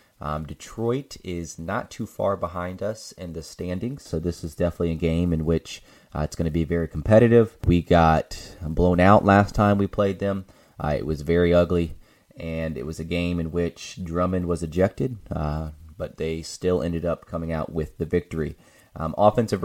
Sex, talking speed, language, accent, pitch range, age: male, 190 wpm, English, American, 80-95 Hz, 30-49